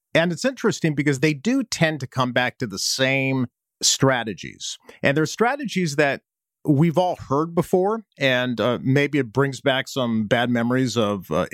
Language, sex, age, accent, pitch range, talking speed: English, male, 40-59, American, 115-155 Hz, 170 wpm